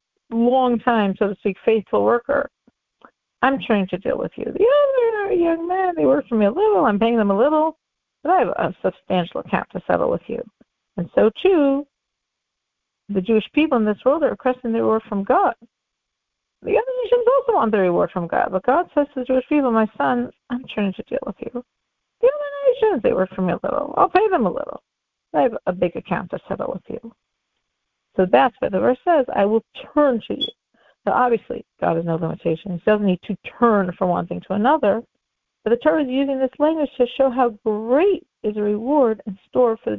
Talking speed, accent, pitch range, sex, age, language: 215 wpm, American, 205-280 Hz, female, 40-59, English